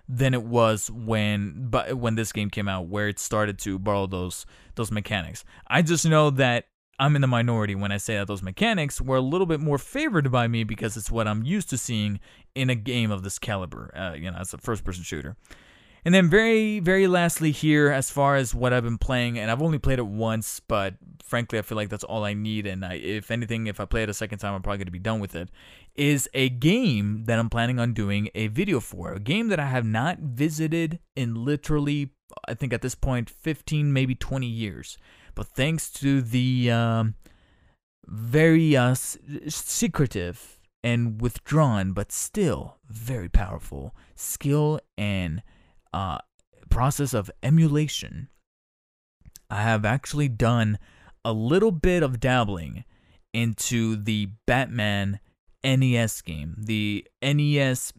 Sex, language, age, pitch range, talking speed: male, English, 20-39, 105-140 Hz, 175 wpm